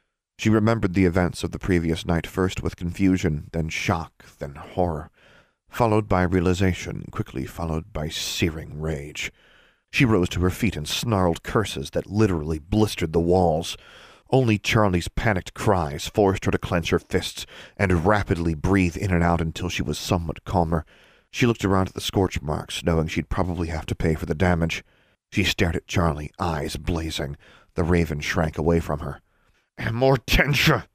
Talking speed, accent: 165 wpm, American